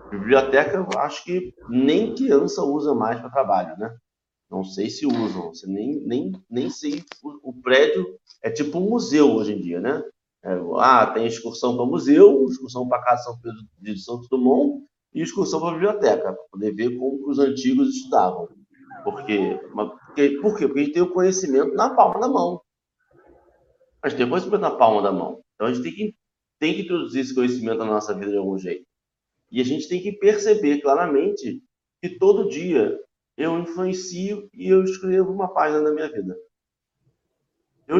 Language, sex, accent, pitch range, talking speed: Portuguese, male, Brazilian, 130-190 Hz, 175 wpm